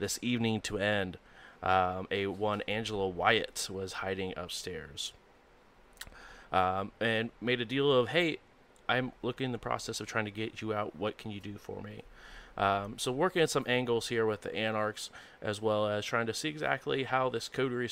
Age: 30-49